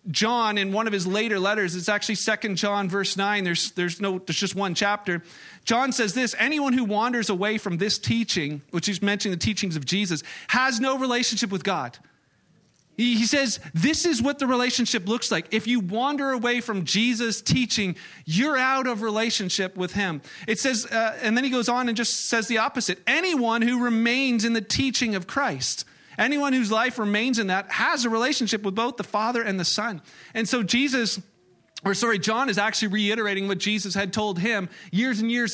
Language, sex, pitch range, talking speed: English, male, 195-240 Hz, 200 wpm